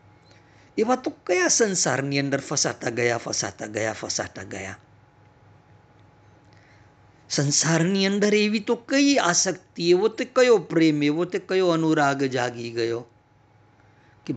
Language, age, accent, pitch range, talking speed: Gujarati, 50-69, native, 105-145 Hz, 90 wpm